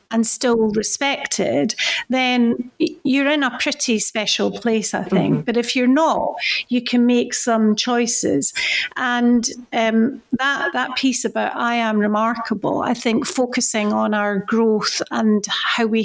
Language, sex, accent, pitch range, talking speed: English, female, British, 215-255 Hz, 145 wpm